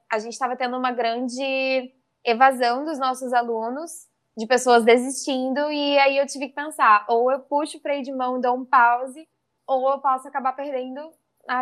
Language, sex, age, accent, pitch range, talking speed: Portuguese, female, 10-29, Brazilian, 215-260 Hz, 185 wpm